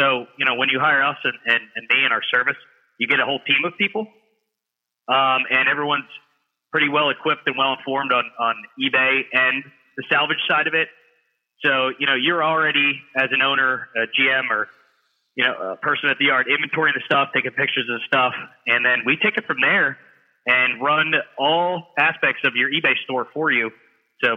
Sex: male